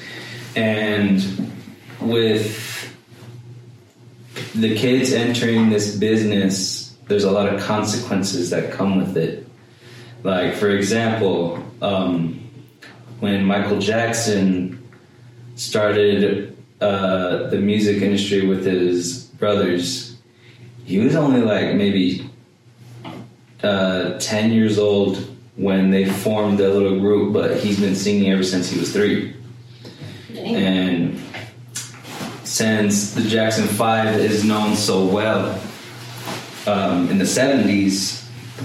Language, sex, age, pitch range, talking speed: English, male, 20-39, 95-120 Hz, 105 wpm